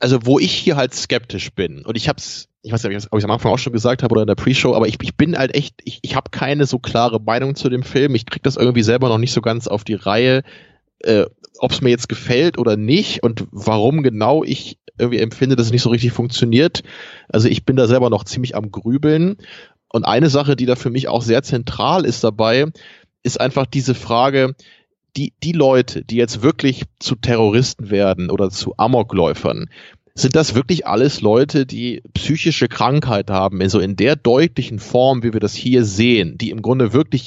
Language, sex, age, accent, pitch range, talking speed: German, male, 20-39, German, 110-135 Hz, 215 wpm